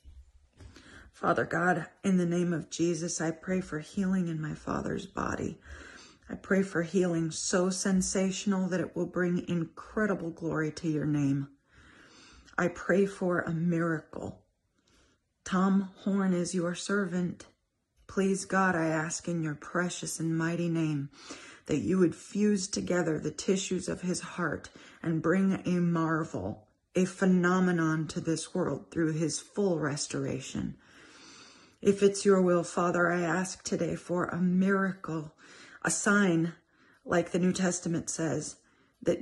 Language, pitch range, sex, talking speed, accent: English, 160-185 Hz, female, 140 wpm, American